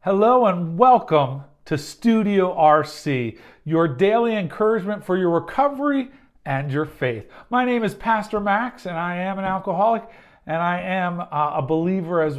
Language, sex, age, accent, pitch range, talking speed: English, male, 40-59, American, 155-225 Hz, 155 wpm